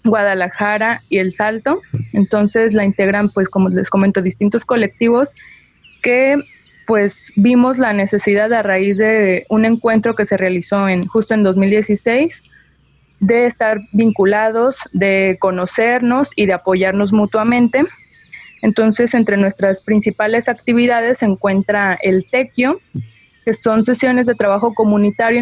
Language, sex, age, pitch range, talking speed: Spanish, female, 20-39, 195-225 Hz, 125 wpm